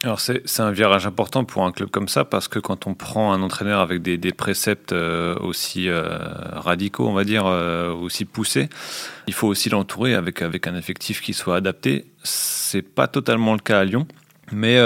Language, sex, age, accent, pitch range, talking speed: French, male, 30-49, French, 95-115 Hz, 210 wpm